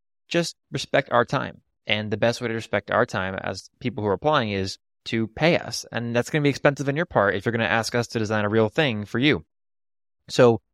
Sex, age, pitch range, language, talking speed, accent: male, 20-39, 100-120 Hz, English, 245 wpm, American